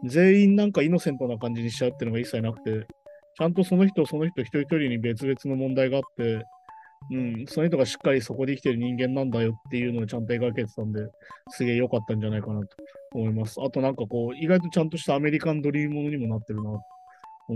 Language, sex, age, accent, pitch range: Japanese, male, 20-39, native, 120-175 Hz